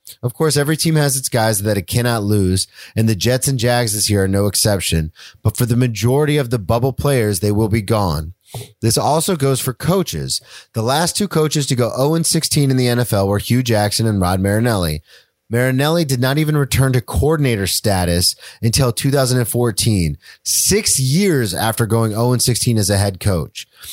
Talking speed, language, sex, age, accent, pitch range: 185 wpm, English, male, 30-49, American, 100-130 Hz